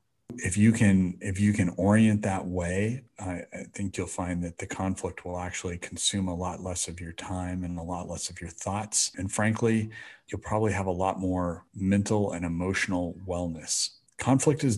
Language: English